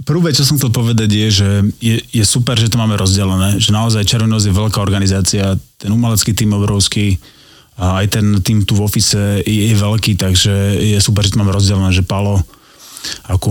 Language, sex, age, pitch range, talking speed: Slovak, male, 20-39, 95-105 Hz, 195 wpm